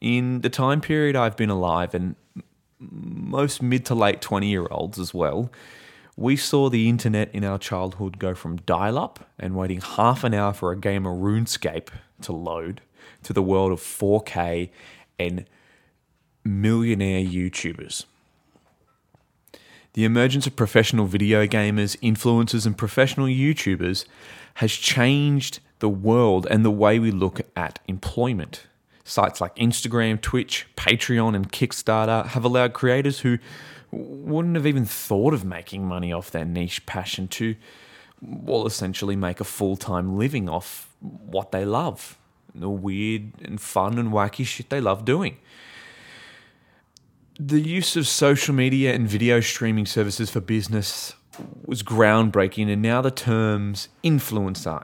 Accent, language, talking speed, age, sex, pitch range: Australian, English, 140 wpm, 20-39, male, 95-125 Hz